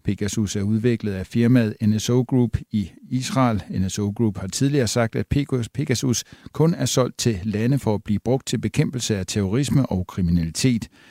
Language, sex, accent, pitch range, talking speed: Danish, male, native, 100-125 Hz, 170 wpm